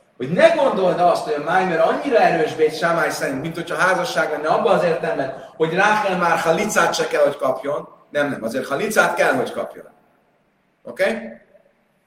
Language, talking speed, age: Hungarian, 180 wpm, 30-49